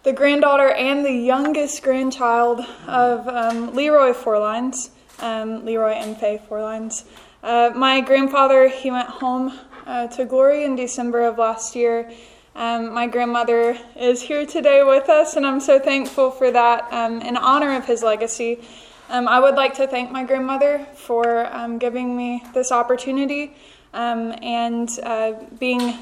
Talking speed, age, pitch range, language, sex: 155 wpm, 20-39, 235-260 Hz, English, female